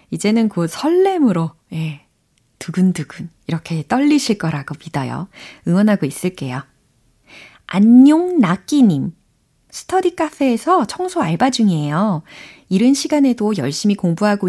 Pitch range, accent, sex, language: 160-230 Hz, native, female, Korean